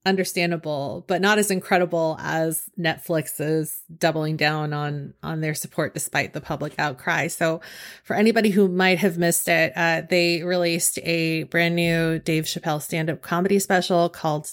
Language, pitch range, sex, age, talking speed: English, 155-180 Hz, female, 30-49, 160 wpm